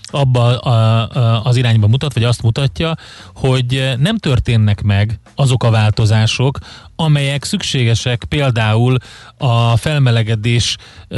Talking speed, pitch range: 100 wpm, 110-140 Hz